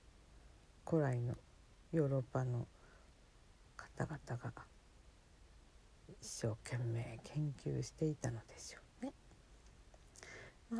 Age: 50-69